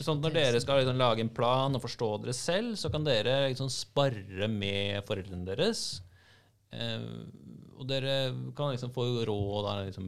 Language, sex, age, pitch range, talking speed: English, male, 30-49, 105-140 Hz, 155 wpm